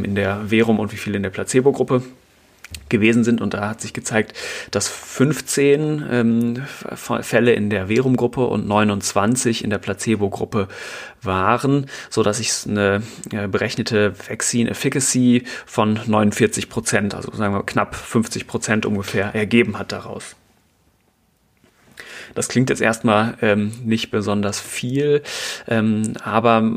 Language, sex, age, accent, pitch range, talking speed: German, male, 30-49, German, 100-115 Hz, 125 wpm